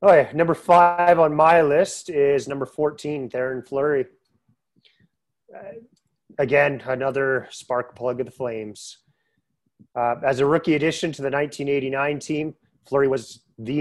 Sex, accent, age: male, American, 30-49